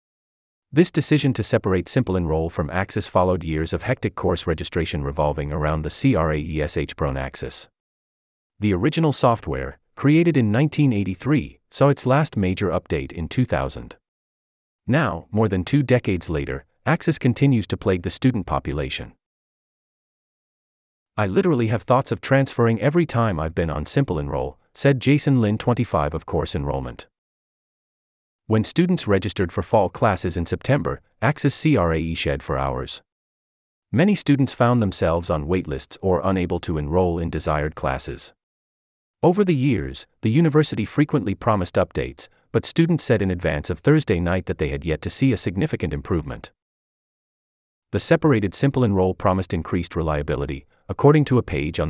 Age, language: 40-59, English